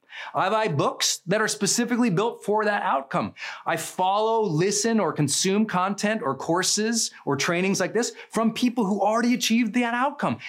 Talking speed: 165 wpm